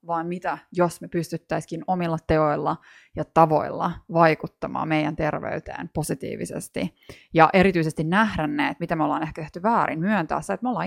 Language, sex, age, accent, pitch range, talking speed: Finnish, female, 20-39, native, 165-210 Hz, 160 wpm